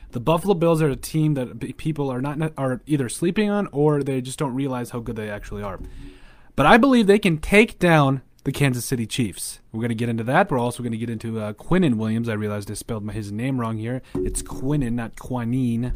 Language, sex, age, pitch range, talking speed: English, male, 30-49, 110-150 Hz, 235 wpm